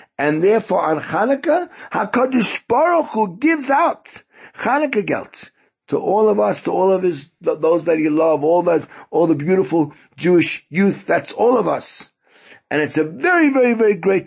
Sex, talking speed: male, 175 wpm